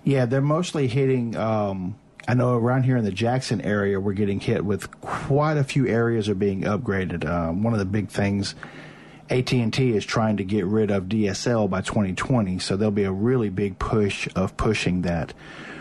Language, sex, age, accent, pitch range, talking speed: English, male, 50-69, American, 100-125 Hz, 190 wpm